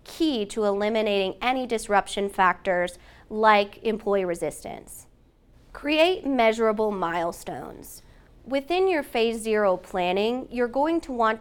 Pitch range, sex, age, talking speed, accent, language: 195-235 Hz, female, 20-39, 110 wpm, American, English